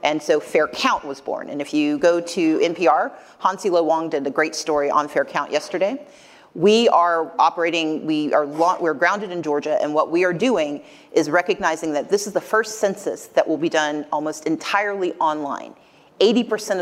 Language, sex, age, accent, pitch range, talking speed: English, female, 40-59, American, 155-200 Hz, 185 wpm